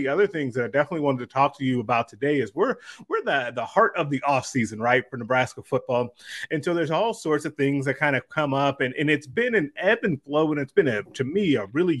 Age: 30-49